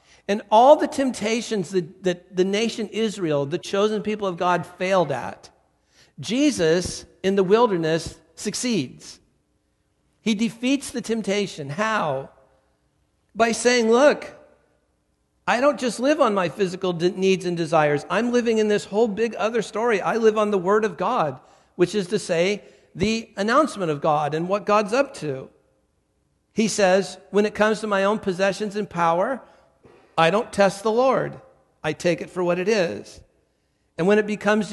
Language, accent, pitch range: English, American, 170-225 Hz